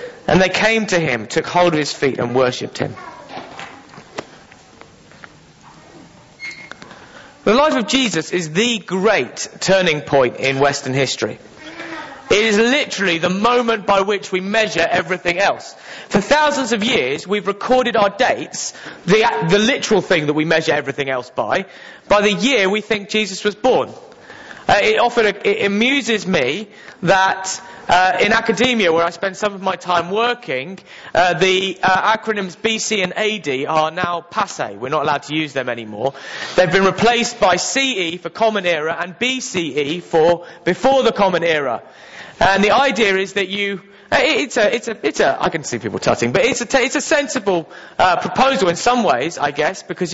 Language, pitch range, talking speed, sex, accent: English, 170-230 Hz, 170 wpm, male, British